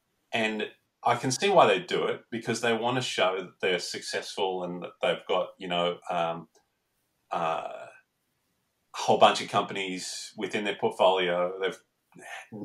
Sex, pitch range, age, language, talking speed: male, 90-115 Hz, 30-49, English, 155 wpm